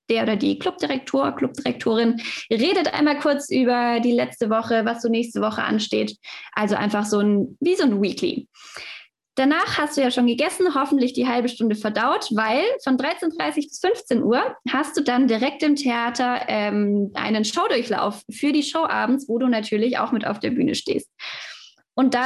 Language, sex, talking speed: German, female, 180 wpm